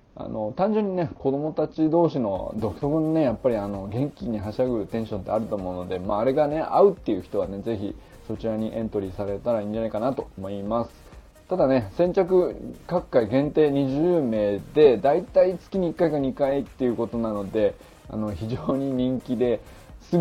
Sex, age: male, 20-39